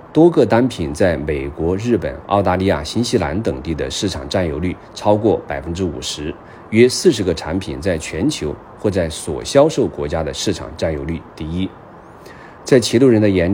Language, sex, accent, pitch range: Chinese, male, native, 80-105 Hz